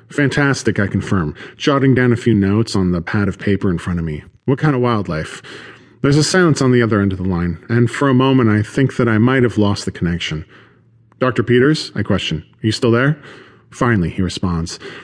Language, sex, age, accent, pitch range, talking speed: English, male, 40-59, American, 95-125 Hz, 220 wpm